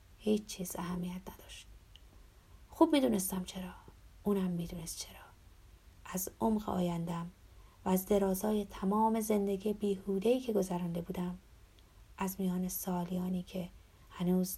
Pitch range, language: 170-210 Hz, Persian